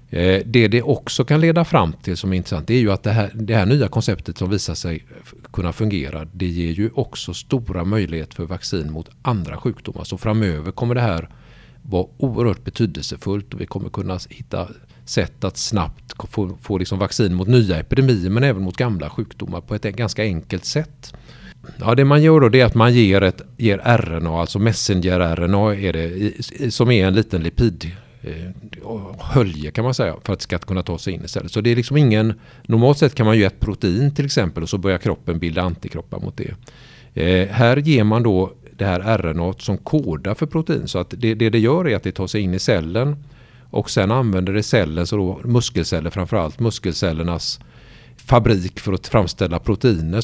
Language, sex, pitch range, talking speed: Swedish, male, 90-120 Hz, 200 wpm